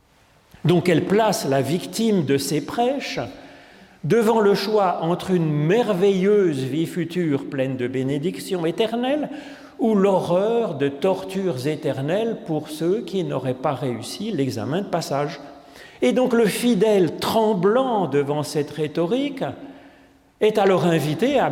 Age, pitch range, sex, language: 40-59, 145-205 Hz, male, French